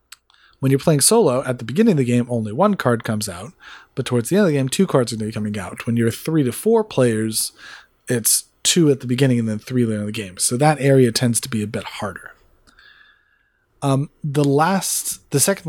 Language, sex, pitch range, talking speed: English, male, 120-155 Hz, 235 wpm